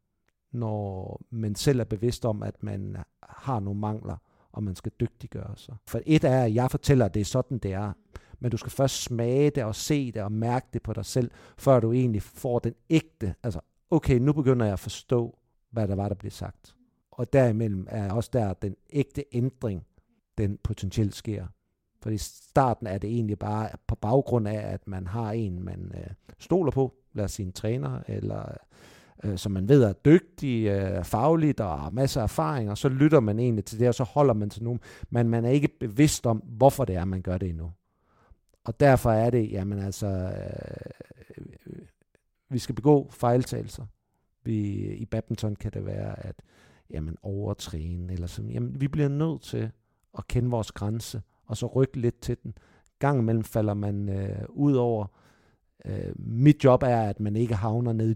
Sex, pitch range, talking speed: male, 100-130 Hz, 190 wpm